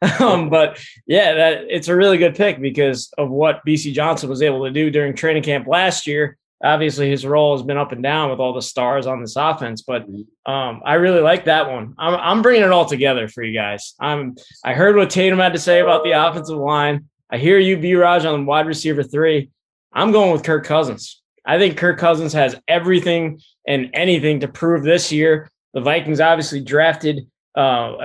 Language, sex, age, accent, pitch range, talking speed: English, male, 20-39, American, 140-170 Hz, 210 wpm